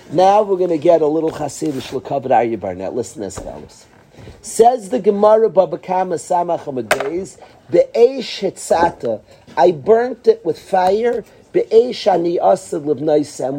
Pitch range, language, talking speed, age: 145-225 Hz, English, 115 wpm, 50-69